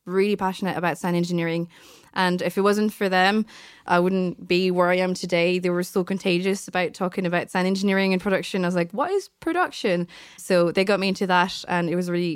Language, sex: English, female